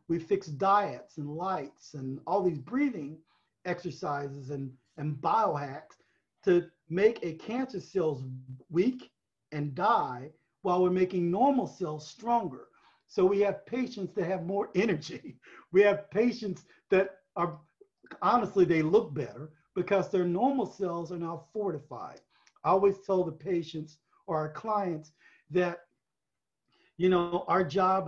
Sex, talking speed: male, 135 wpm